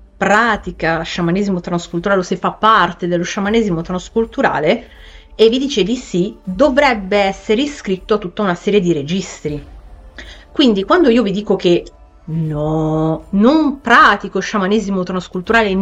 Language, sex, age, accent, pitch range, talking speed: Italian, female, 30-49, native, 175-220 Hz, 135 wpm